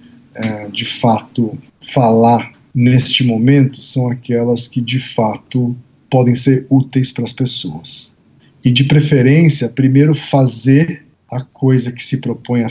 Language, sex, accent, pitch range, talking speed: Portuguese, male, Brazilian, 120-150 Hz, 125 wpm